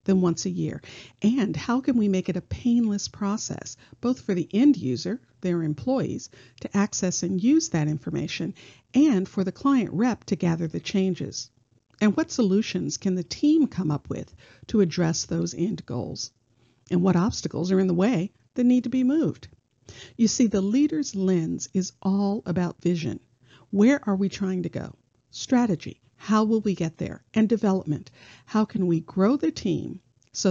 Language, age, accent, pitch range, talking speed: English, 50-69, American, 160-220 Hz, 180 wpm